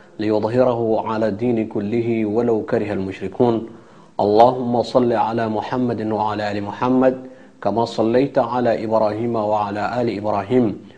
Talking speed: 115 wpm